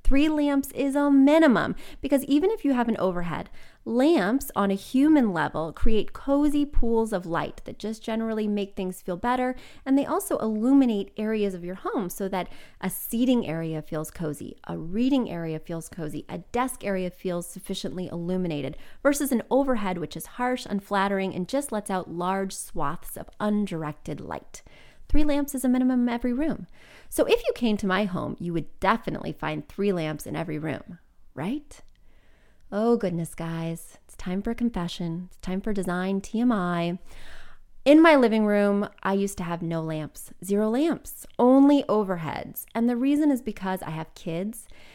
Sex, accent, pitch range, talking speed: female, American, 180-250 Hz, 175 wpm